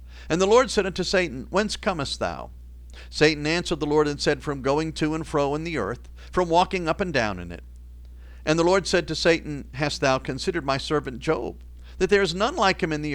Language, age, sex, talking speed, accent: English, 50-69, male, 230 wpm, American